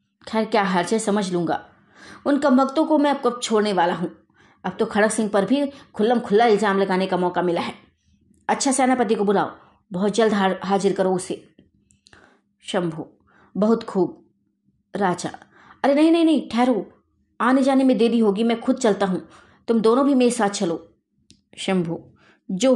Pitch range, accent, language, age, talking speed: 195-270 Hz, native, Hindi, 20-39, 170 wpm